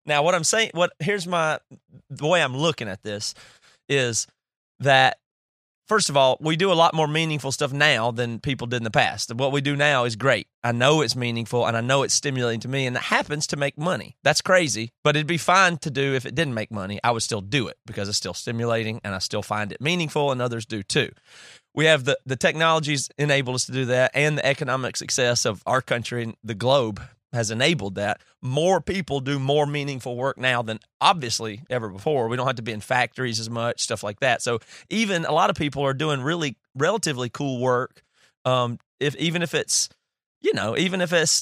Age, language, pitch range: 30-49, English, 120-155 Hz